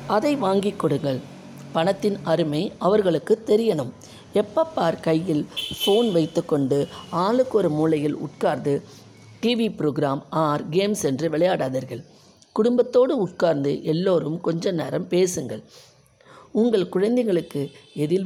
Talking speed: 100 wpm